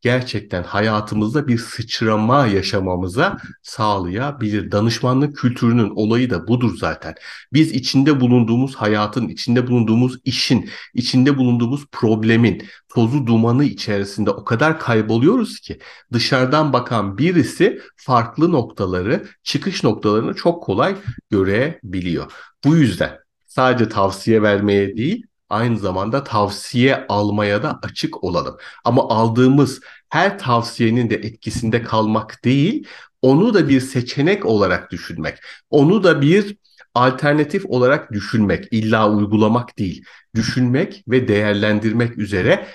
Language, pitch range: Turkish, 105-125 Hz